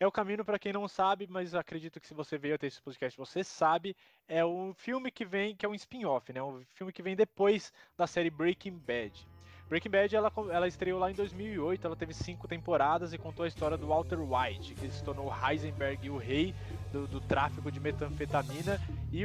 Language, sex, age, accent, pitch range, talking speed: Portuguese, male, 20-39, Brazilian, 145-190 Hz, 210 wpm